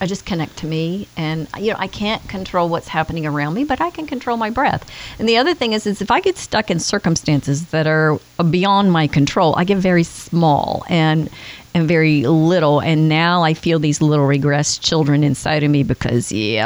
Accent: American